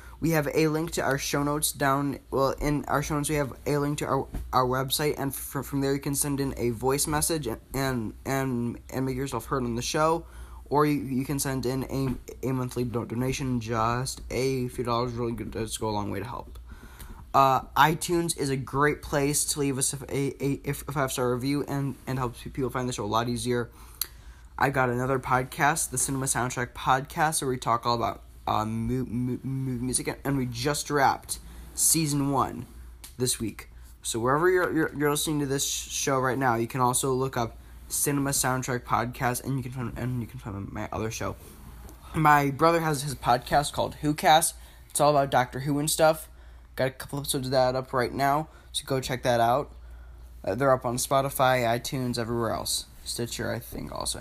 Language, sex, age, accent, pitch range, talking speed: English, male, 10-29, American, 120-140 Hz, 205 wpm